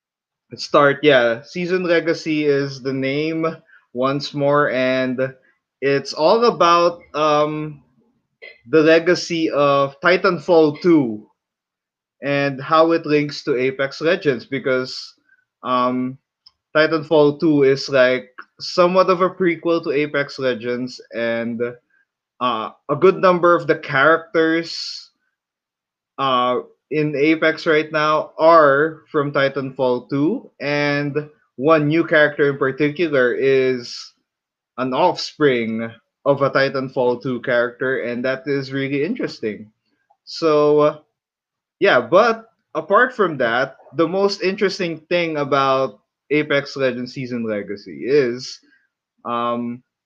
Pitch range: 130-165 Hz